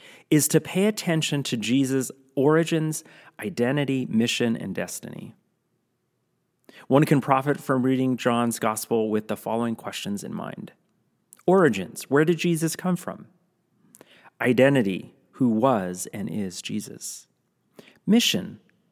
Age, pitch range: 30-49, 115-155 Hz